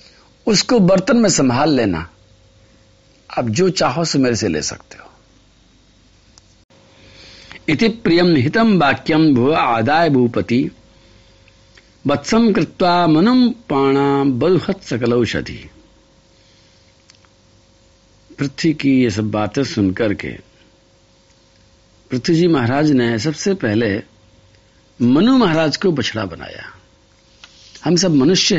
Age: 60-79